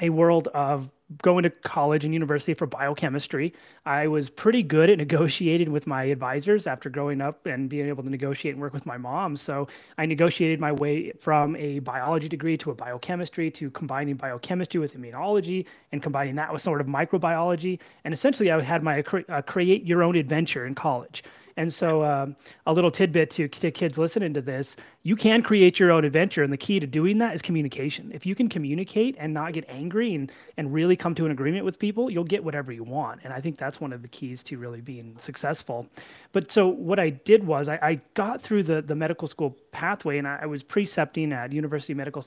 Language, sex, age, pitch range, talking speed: English, male, 30-49, 140-170 Hz, 215 wpm